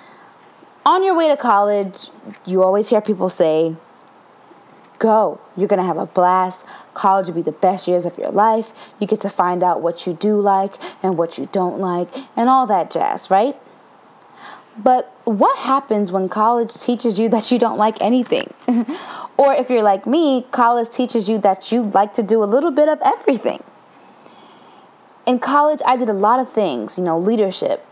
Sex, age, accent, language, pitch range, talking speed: female, 20-39, American, English, 190-245 Hz, 185 wpm